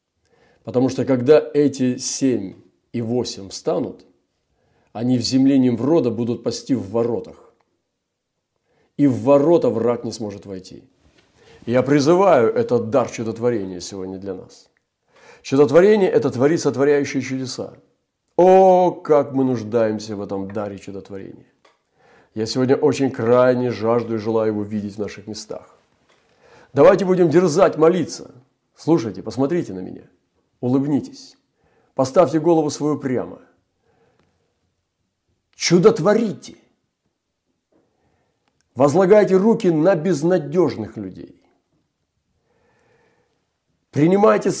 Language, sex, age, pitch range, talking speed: Russian, male, 40-59, 110-160 Hz, 105 wpm